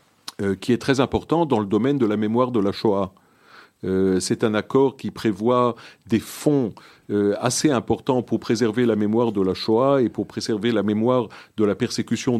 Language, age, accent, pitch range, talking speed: French, 50-69, French, 105-135 Hz, 190 wpm